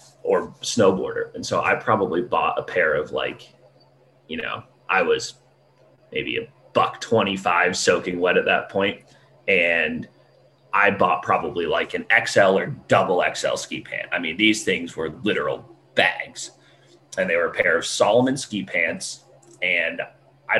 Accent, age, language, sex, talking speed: American, 30-49, English, male, 155 wpm